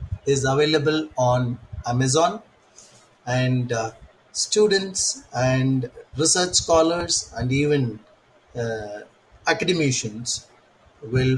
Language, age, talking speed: English, 30-49, 80 wpm